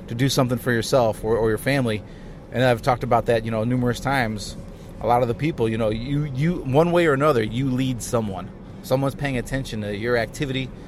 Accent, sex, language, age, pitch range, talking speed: American, male, English, 30-49, 110-130 Hz, 220 wpm